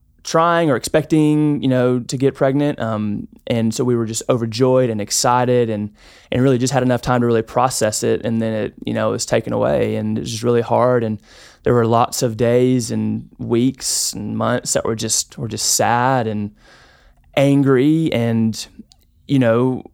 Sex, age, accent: male, 20-39, American